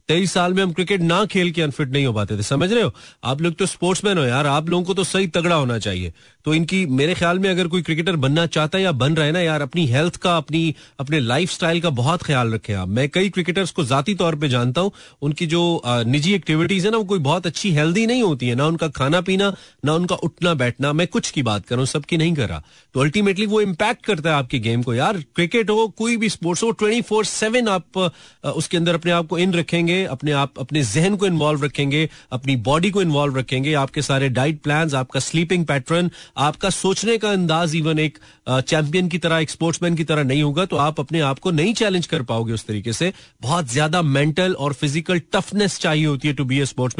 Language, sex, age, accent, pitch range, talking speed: Hindi, male, 30-49, native, 140-180 Hz, 185 wpm